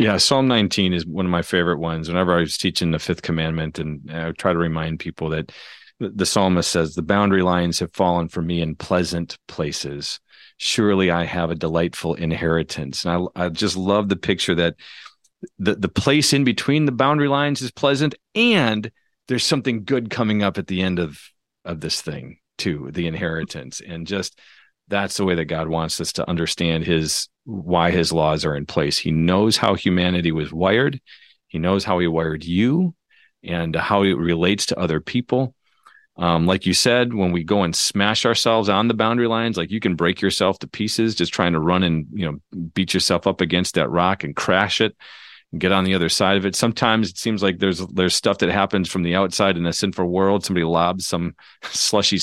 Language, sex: English, male